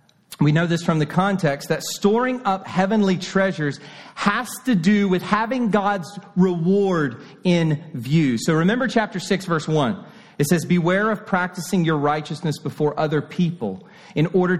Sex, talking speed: male, 155 wpm